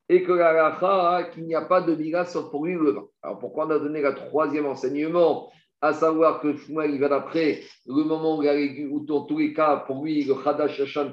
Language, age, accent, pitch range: French, 50-69, French, 140-160 Hz